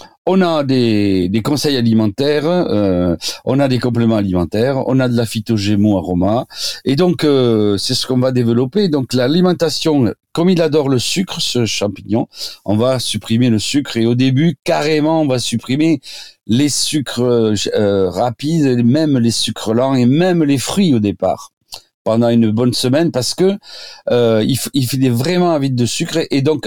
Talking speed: 175 wpm